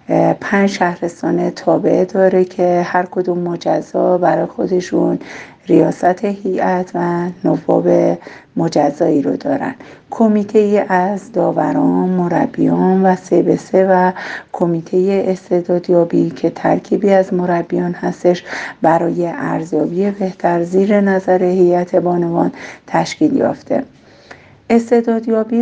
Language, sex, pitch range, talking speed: Persian, female, 170-190 Hz, 95 wpm